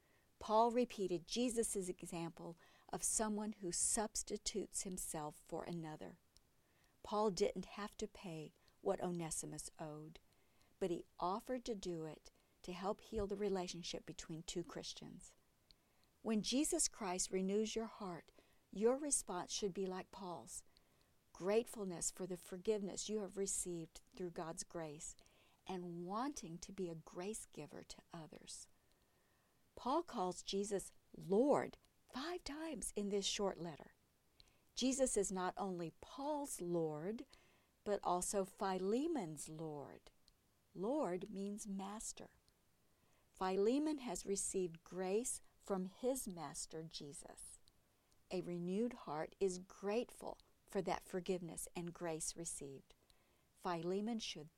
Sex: female